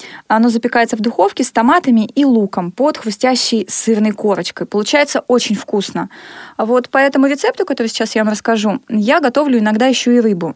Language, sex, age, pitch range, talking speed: Russian, female, 20-39, 210-270 Hz, 170 wpm